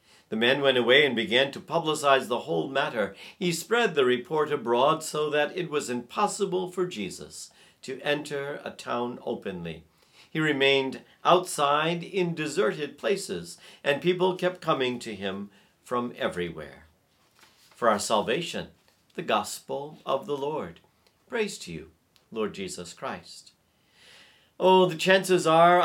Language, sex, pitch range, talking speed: English, male, 120-175 Hz, 140 wpm